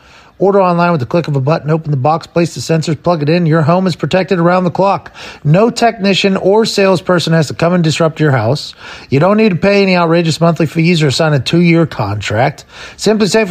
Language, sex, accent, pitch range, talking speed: English, male, American, 140-185 Hz, 220 wpm